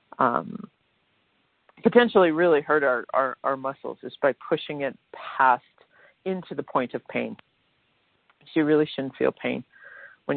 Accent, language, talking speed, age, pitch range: American, English, 140 wpm, 50-69, 135-205 Hz